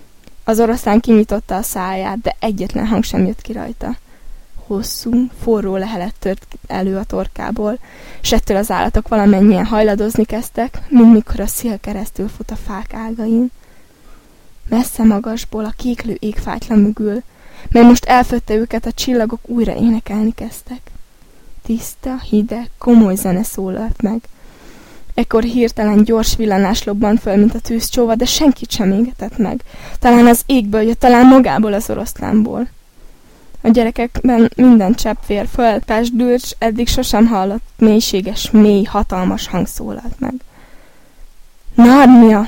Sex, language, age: female, Hungarian, 10-29